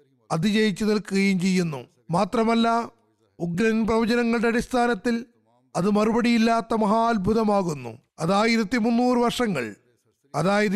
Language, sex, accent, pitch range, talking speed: Malayalam, male, native, 185-235 Hz, 85 wpm